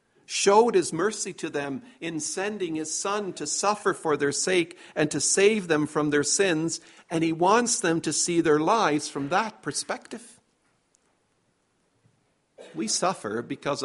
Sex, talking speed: male, 150 wpm